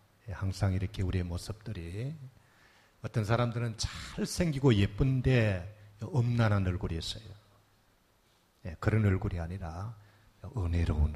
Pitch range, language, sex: 95-115 Hz, Korean, male